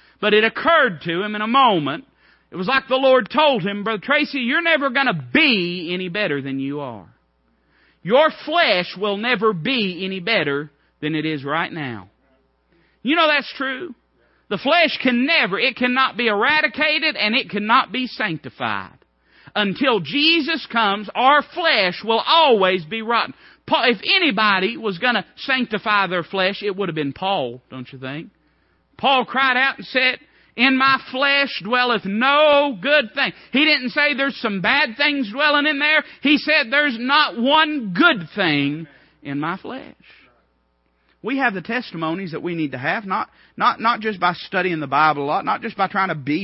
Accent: American